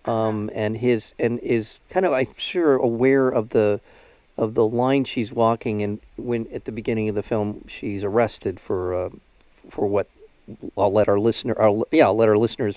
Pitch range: 105-120 Hz